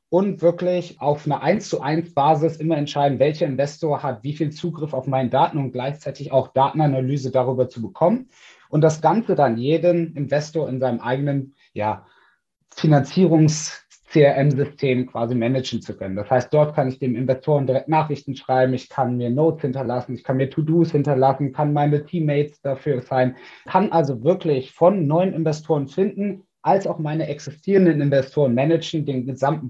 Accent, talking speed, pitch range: German, 155 wpm, 130-160 Hz